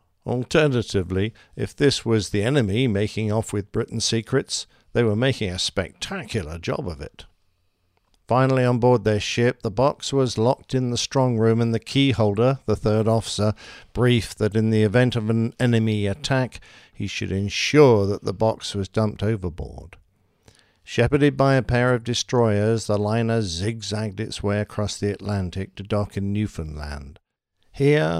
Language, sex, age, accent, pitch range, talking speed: English, male, 50-69, British, 100-120 Hz, 160 wpm